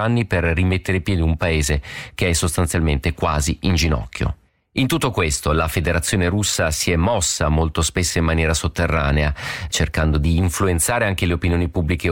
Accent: native